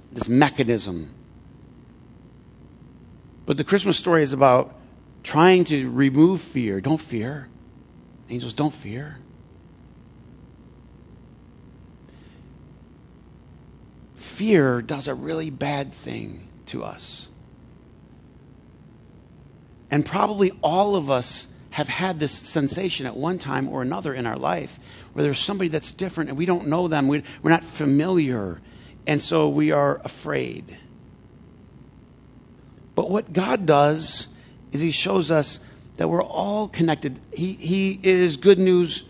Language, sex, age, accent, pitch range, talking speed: English, male, 50-69, American, 135-175 Hz, 120 wpm